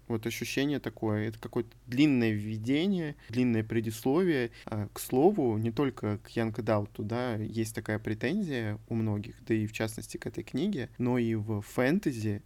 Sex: male